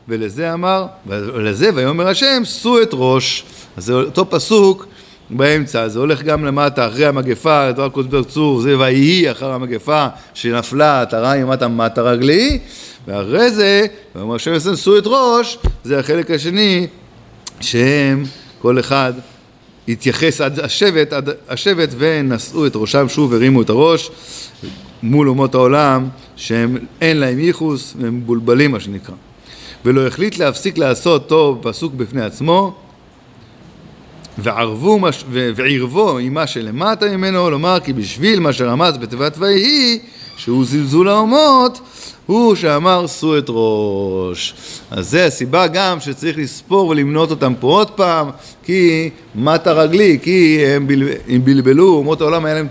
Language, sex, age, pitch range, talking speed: Hebrew, male, 50-69, 125-170 Hz, 140 wpm